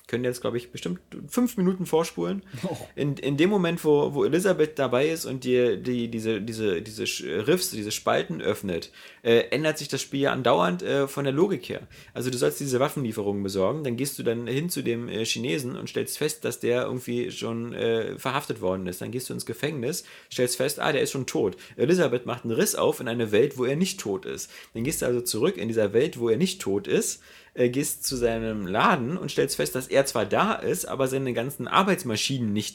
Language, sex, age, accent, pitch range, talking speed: German, male, 30-49, German, 115-150 Hz, 215 wpm